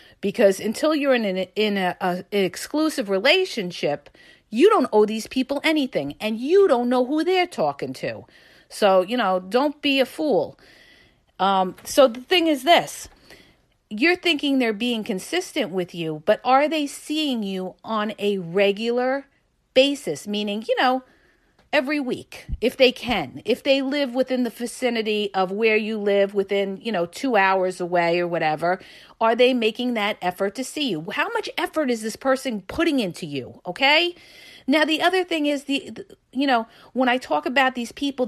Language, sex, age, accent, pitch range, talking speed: English, female, 50-69, American, 200-285 Hz, 170 wpm